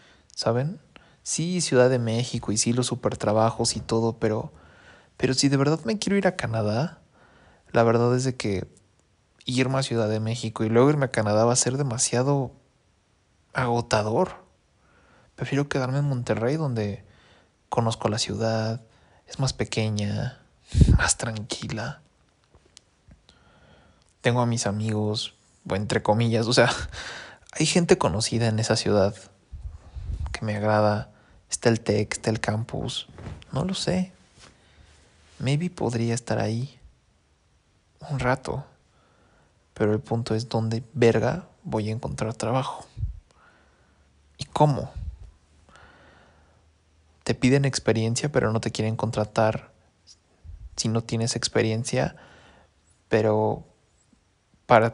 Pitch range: 100-125 Hz